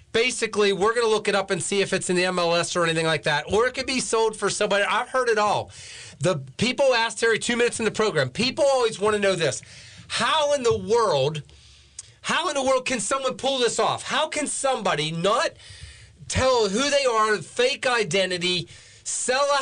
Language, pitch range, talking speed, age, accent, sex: English, 180-235 Hz, 210 wpm, 40-59, American, male